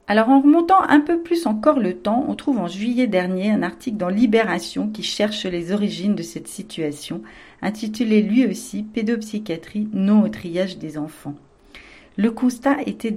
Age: 40-59